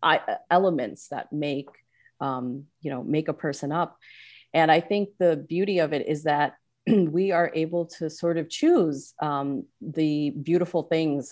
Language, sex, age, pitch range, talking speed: English, female, 40-59, 140-160 Hz, 160 wpm